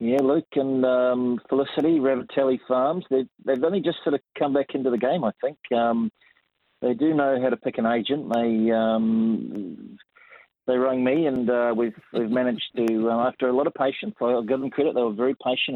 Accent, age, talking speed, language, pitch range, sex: Australian, 30-49, 200 wpm, English, 110-130 Hz, male